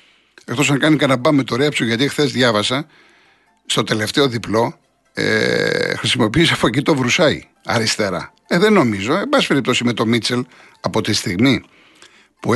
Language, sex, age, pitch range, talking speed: Greek, male, 60-79, 120-155 Hz, 145 wpm